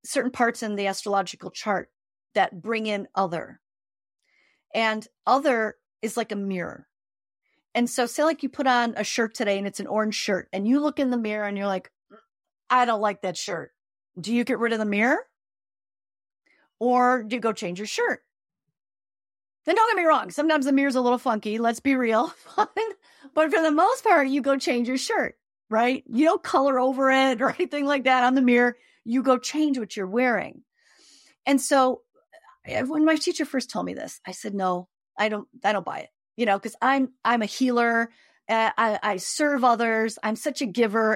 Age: 40-59